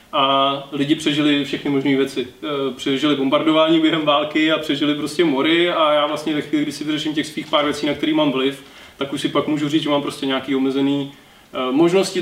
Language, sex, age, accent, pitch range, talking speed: Czech, male, 20-39, native, 145-185 Hz, 205 wpm